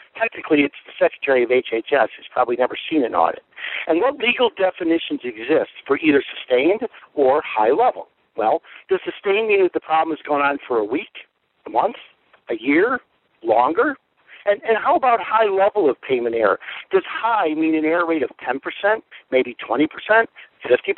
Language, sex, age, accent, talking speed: English, male, 60-79, American, 170 wpm